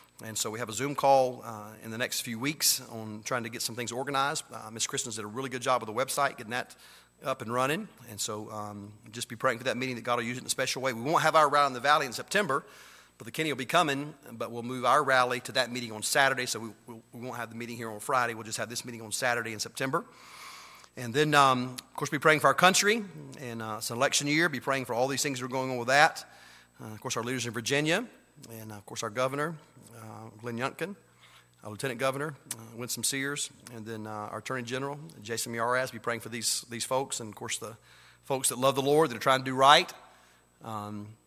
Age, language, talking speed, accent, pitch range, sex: 40-59, English, 260 wpm, American, 115-135 Hz, male